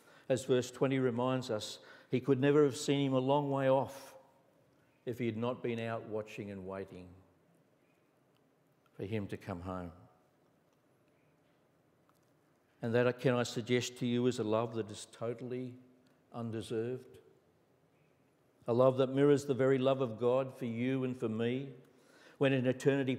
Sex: male